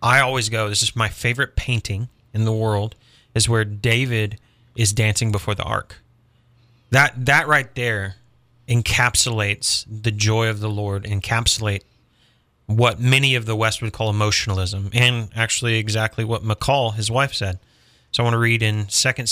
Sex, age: male, 30-49